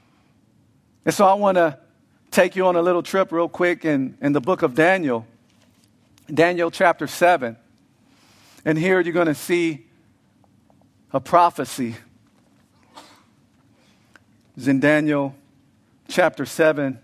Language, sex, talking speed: English, male, 125 wpm